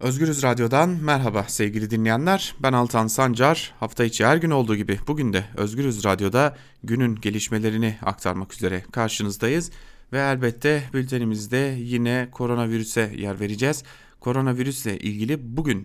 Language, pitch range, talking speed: Turkish, 105-135 Hz, 125 wpm